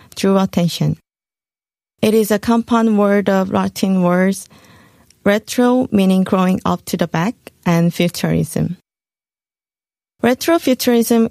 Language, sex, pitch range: Korean, female, 180-215 Hz